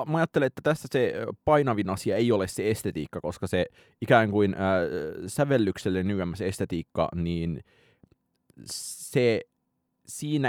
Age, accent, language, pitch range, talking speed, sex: 30-49, native, Finnish, 90-120 Hz, 115 wpm, male